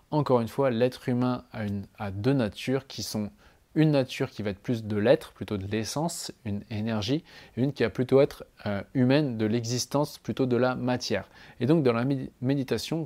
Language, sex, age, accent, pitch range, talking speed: French, male, 20-39, French, 110-135 Hz, 200 wpm